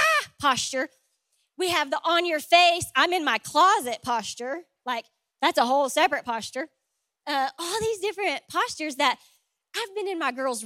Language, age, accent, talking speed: English, 20-39, American, 165 wpm